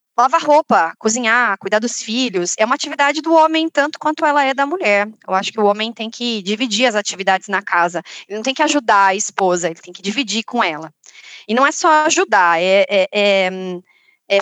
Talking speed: 210 wpm